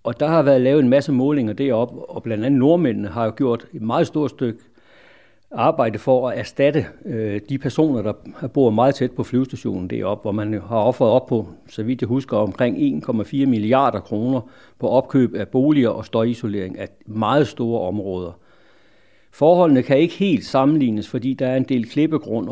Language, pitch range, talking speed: Danish, 110-140 Hz, 185 wpm